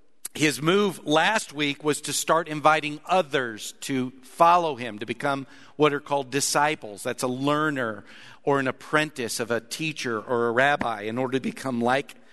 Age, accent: 50-69, American